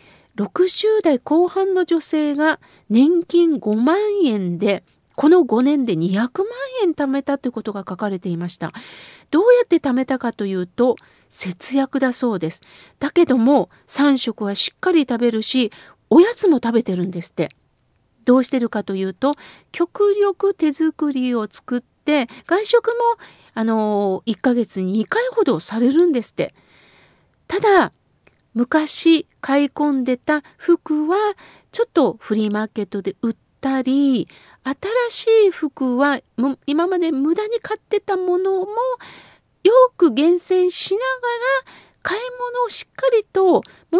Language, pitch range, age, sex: Japanese, 240-375 Hz, 40-59, female